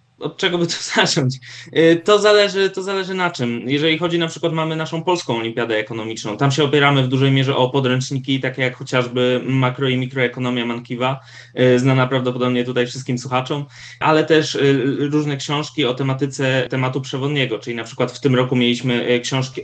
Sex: male